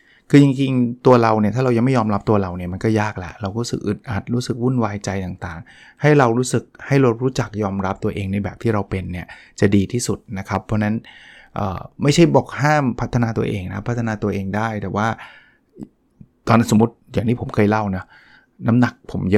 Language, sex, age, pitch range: Thai, male, 20-39, 105-130 Hz